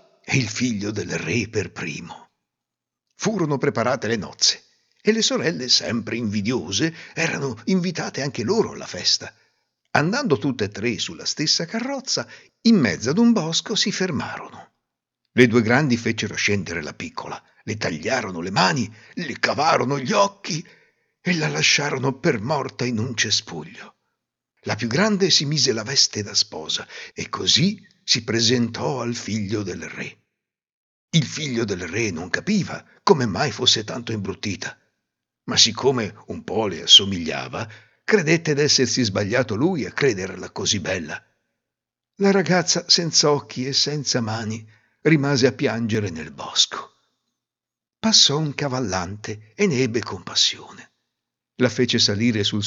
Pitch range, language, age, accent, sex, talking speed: 110-160 Hz, Italian, 60-79, native, male, 140 wpm